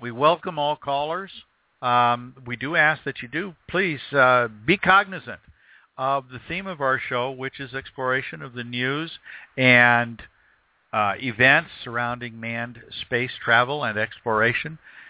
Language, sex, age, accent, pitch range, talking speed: English, male, 50-69, American, 120-150 Hz, 145 wpm